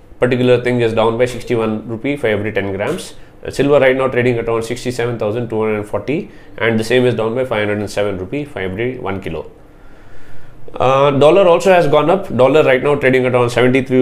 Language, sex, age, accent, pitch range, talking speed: English, male, 20-39, Indian, 110-130 Hz, 185 wpm